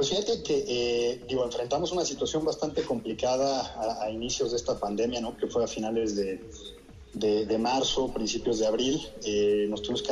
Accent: Mexican